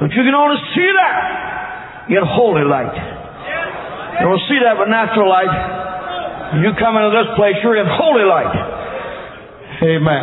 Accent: American